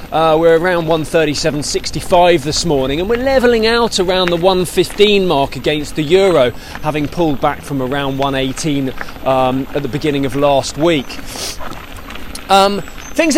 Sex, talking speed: male, 140 wpm